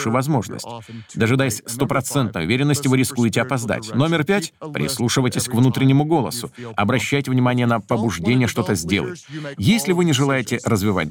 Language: Russian